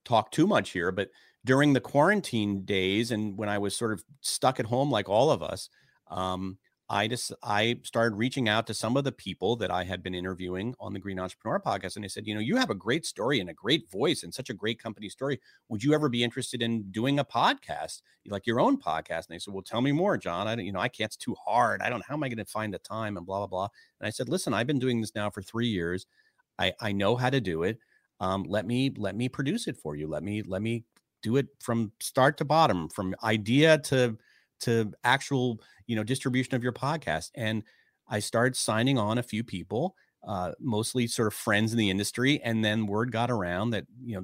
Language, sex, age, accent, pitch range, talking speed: English, male, 40-59, American, 100-125 Hz, 245 wpm